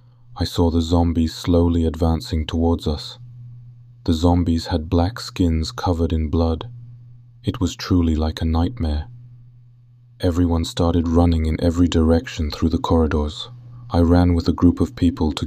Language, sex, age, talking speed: English, male, 20-39, 150 wpm